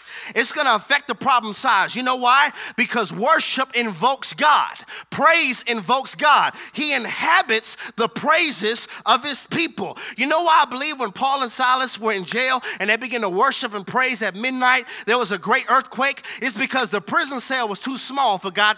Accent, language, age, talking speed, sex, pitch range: American, English, 30-49, 190 wpm, male, 230-290 Hz